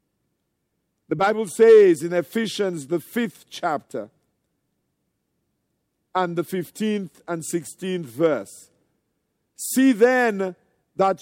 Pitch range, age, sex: 180-225 Hz, 50-69, male